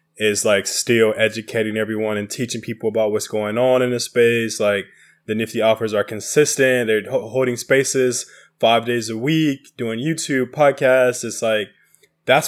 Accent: American